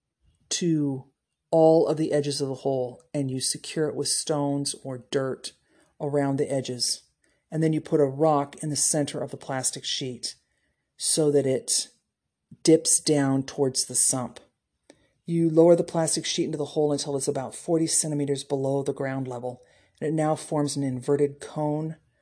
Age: 40-59